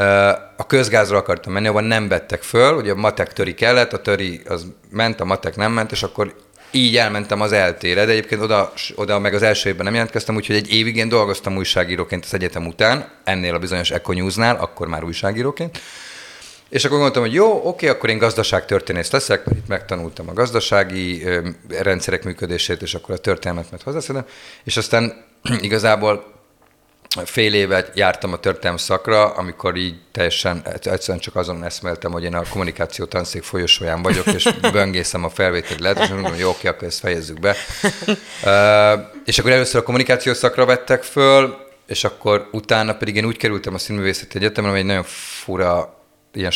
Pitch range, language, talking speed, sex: 90-115 Hz, Hungarian, 170 wpm, male